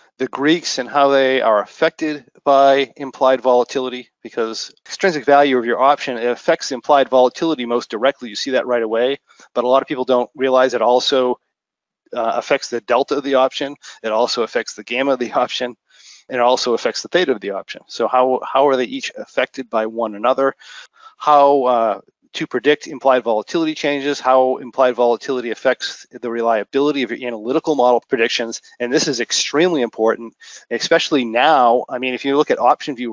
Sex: male